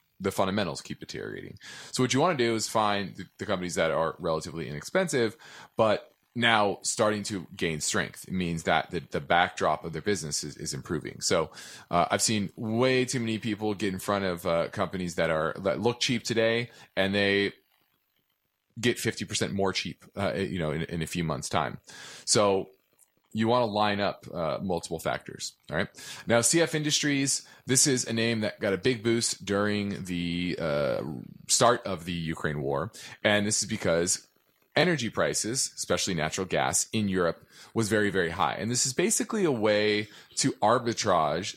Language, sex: English, male